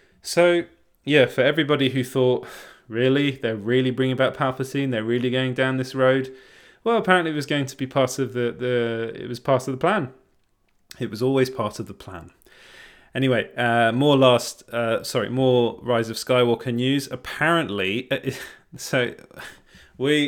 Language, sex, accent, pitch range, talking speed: English, male, British, 110-130 Hz, 170 wpm